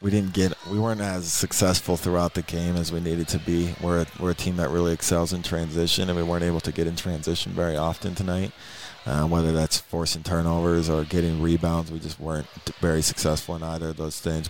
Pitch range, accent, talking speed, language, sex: 80-90 Hz, American, 225 wpm, English, male